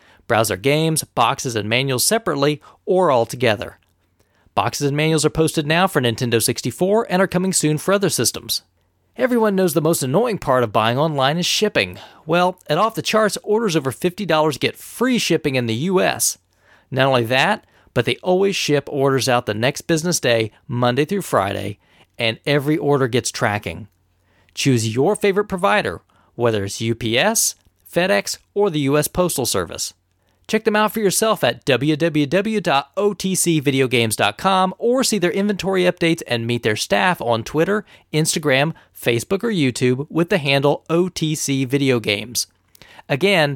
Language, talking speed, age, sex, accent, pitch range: English, 155 wpm, 40-59, male, American, 120-180 Hz